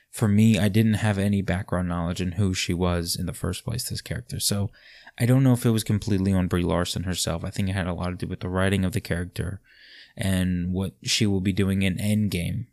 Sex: male